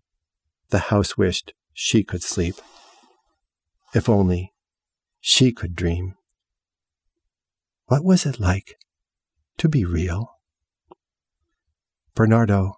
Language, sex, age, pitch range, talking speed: English, male, 50-69, 90-110 Hz, 90 wpm